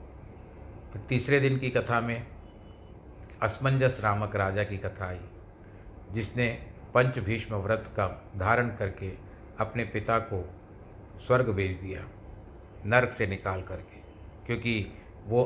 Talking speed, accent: 110 wpm, native